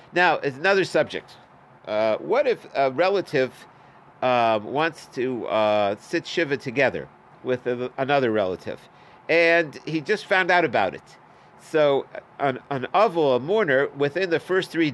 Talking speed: 150 wpm